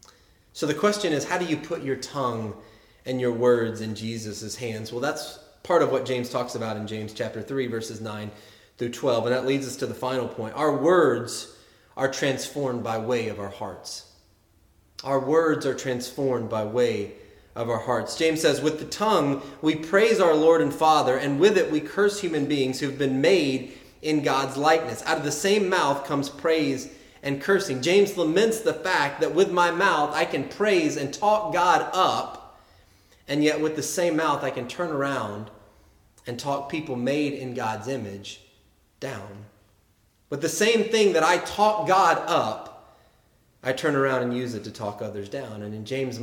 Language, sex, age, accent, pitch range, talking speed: English, male, 30-49, American, 115-155 Hz, 190 wpm